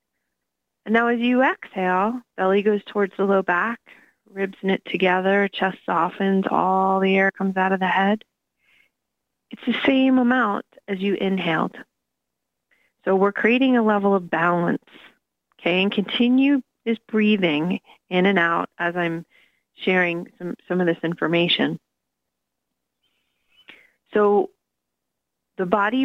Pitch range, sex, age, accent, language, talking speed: 180-215 Hz, female, 30-49, American, English, 130 wpm